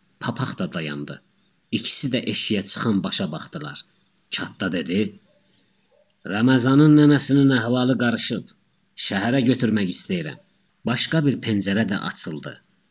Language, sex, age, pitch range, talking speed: Persian, male, 50-69, 115-155 Hz, 105 wpm